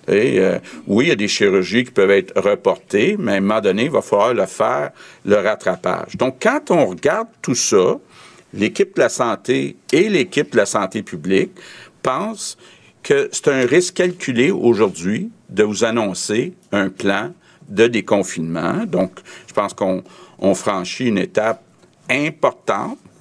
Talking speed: 165 wpm